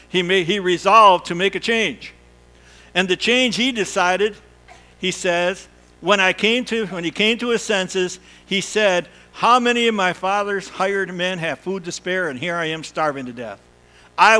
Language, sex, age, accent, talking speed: English, male, 60-79, American, 190 wpm